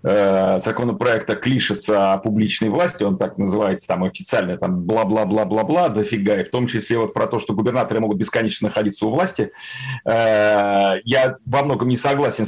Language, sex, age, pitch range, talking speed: Russian, male, 40-59, 115-145 Hz, 160 wpm